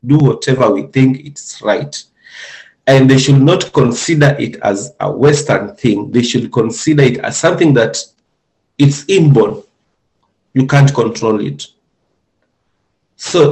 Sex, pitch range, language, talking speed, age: male, 115-145 Hz, English, 135 wpm, 40-59